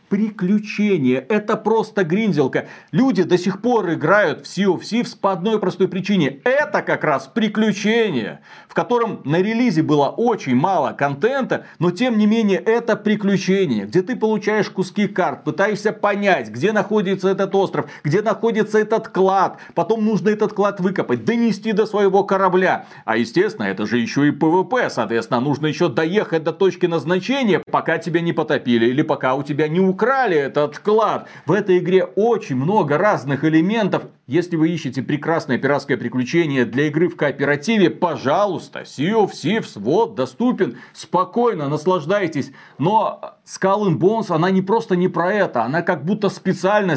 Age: 40-59